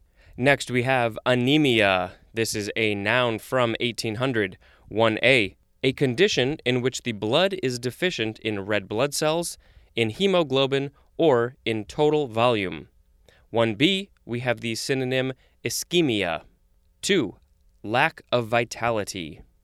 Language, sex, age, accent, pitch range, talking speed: English, male, 20-39, American, 105-135 Hz, 120 wpm